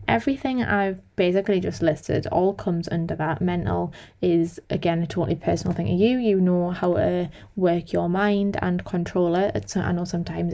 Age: 20-39